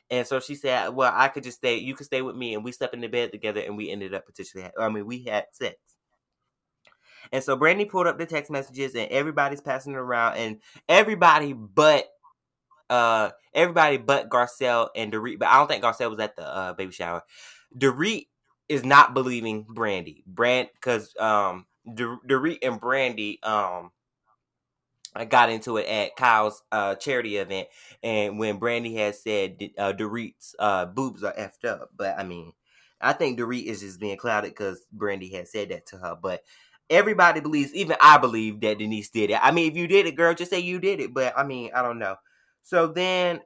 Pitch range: 110-140 Hz